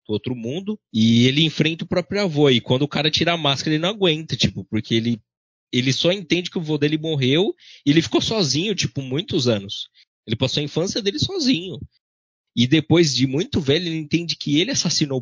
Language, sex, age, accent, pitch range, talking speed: Portuguese, male, 20-39, Brazilian, 115-160 Hz, 205 wpm